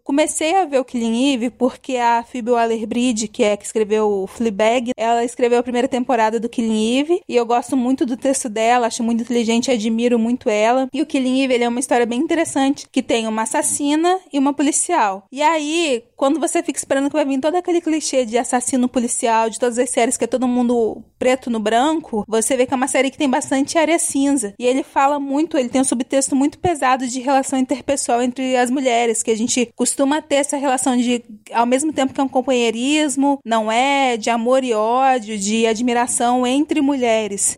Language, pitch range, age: Portuguese, 235-270 Hz, 20-39